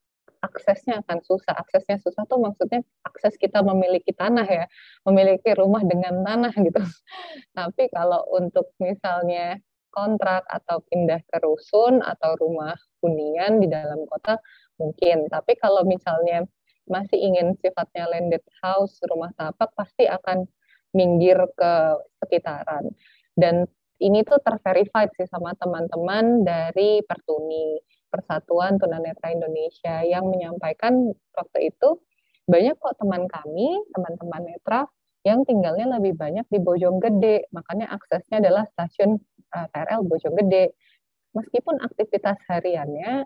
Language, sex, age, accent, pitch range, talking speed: Indonesian, female, 20-39, native, 170-220 Hz, 120 wpm